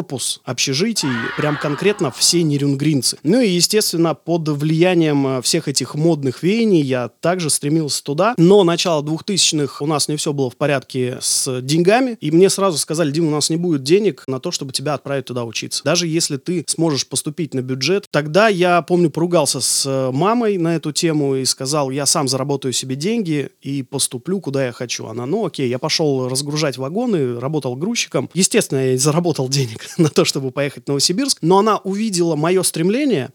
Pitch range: 140-180 Hz